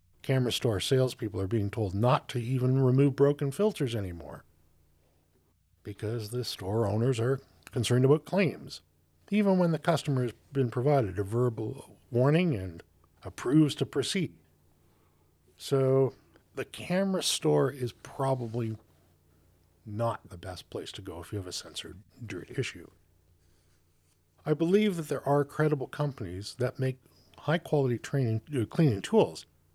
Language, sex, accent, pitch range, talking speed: English, male, American, 90-145 Hz, 135 wpm